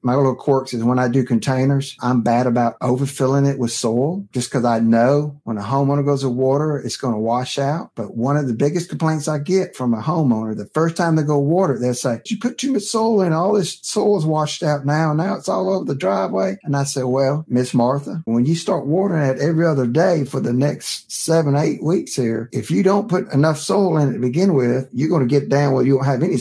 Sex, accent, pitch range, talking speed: male, American, 125-155 Hz, 250 wpm